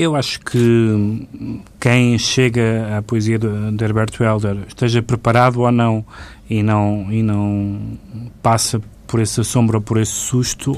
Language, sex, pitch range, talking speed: Portuguese, male, 105-125 Hz, 145 wpm